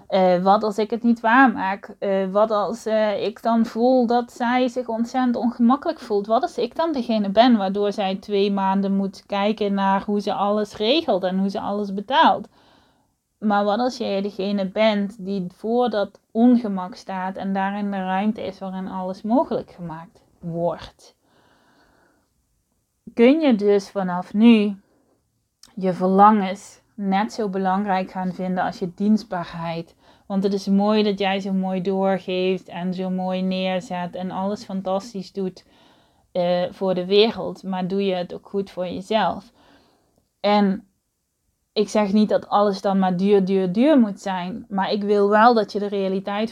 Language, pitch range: Dutch, 190-220 Hz